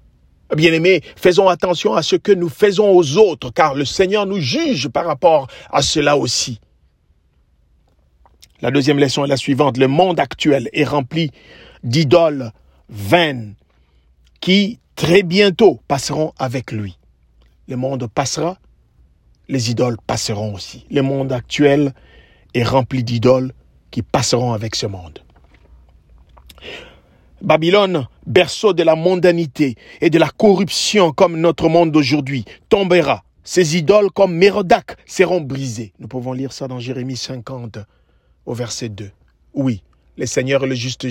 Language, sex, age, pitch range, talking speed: French, male, 50-69, 115-180 Hz, 135 wpm